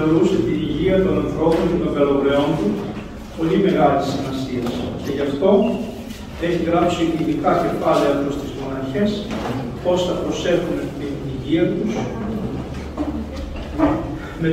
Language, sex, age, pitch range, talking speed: Greek, male, 40-59, 145-175 Hz, 120 wpm